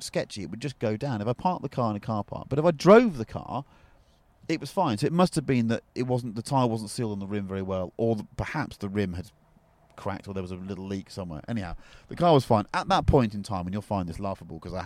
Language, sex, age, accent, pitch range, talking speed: English, male, 30-49, British, 95-130 Hz, 285 wpm